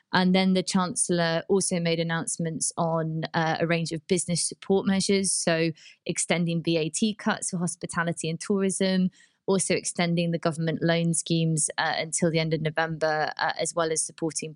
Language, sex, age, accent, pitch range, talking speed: English, female, 20-39, British, 160-185 Hz, 165 wpm